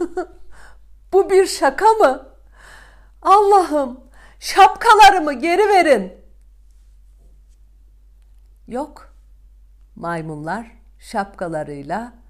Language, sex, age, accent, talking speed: Turkish, female, 50-69, native, 55 wpm